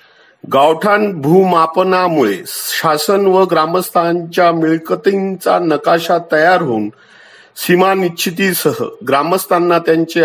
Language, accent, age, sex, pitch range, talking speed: Marathi, native, 50-69, male, 150-185 Hz, 75 wpm